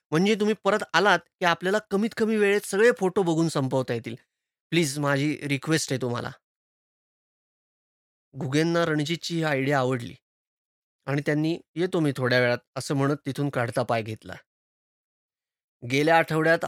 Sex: male